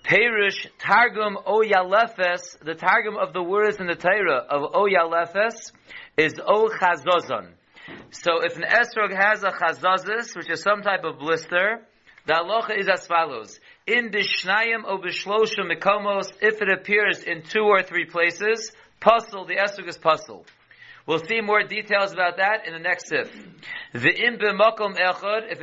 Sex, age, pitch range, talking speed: male, 40-59, 180-220 Hz, 145 wpm